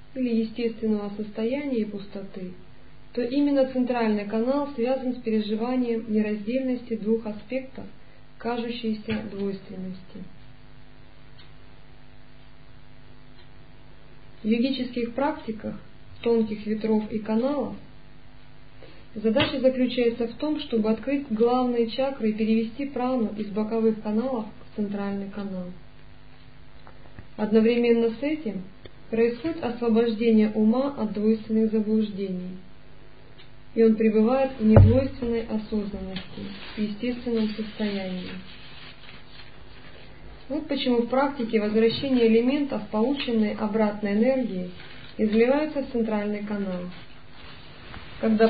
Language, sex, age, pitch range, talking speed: Russian, male, 50-69, 210-245 Hz, 90 wpm